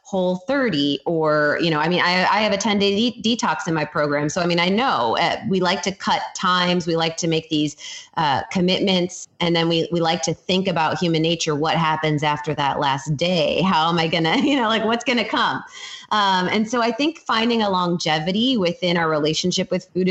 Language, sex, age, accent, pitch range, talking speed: English, female, 30-49, American, 160-195 Hz, 225 wpm